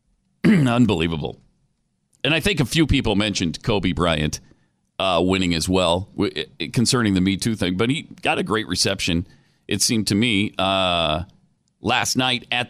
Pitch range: 95-130 Hz